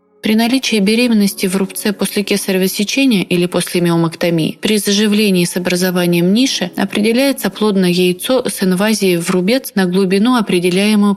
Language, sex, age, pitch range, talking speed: Russian, female, 30-49, 175-210 Hz, 135 wpm